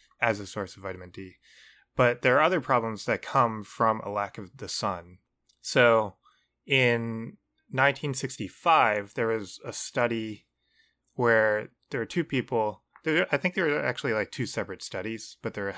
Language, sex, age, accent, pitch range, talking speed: English, male, 20-39, American, 105-125 Hz, 165 wpm